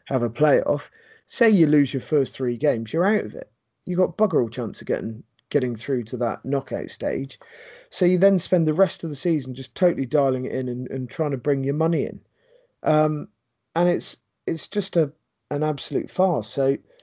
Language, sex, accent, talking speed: English, male, British, 210 wpm